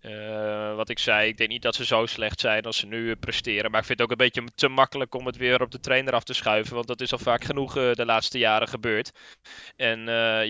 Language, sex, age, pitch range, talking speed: English, male, 20-39, 110-125 Hz, 275 wpm